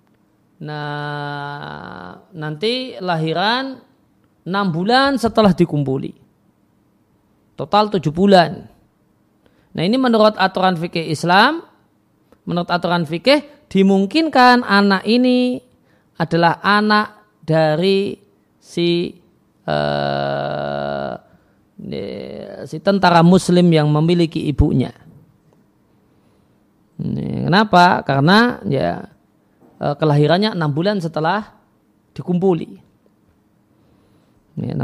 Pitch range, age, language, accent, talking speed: 150-210 Hz, 40-59, Indonesian, native, 70 wpm